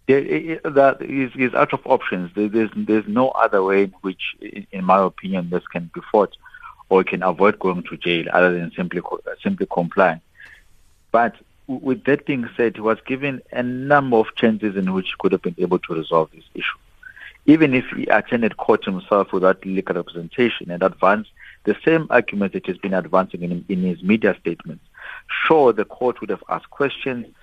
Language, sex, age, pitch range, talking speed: English, male, 50-69, 90-125 Hz, 180 wpm